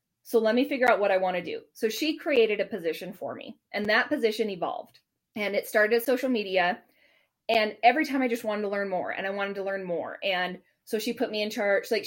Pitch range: 190-245 Hz